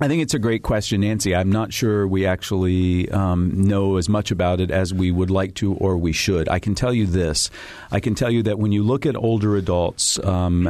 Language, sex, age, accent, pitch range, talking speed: English, male, 40-59, American, 90-110 Hz, 240 wpm